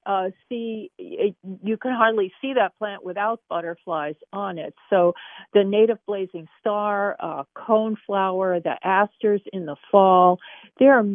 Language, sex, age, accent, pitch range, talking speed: English, female, 50-69, American, 170-210 Hz, 145 wpm